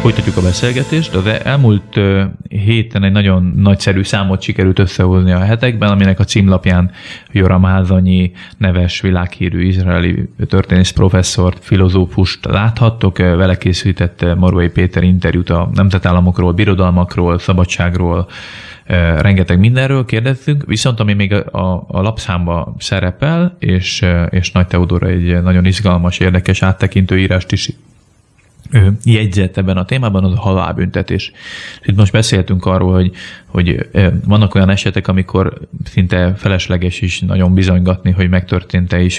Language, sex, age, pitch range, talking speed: Hungarian, male, 20-39, 90-100 Hz, 125 wpm